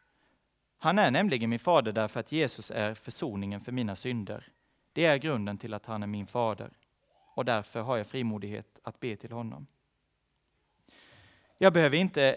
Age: 30-49